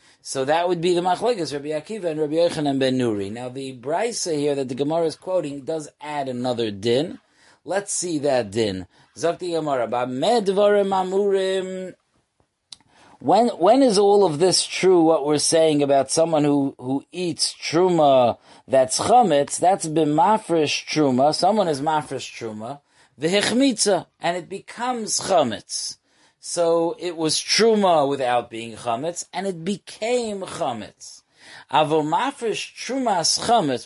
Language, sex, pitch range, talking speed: English, male, 130-180 Hz, 135 wpm